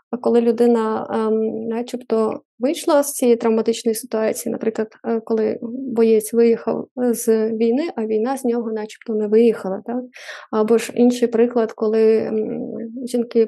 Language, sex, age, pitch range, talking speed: Ukrainian, female, 20-39, 225-255 Hz, 130 wpm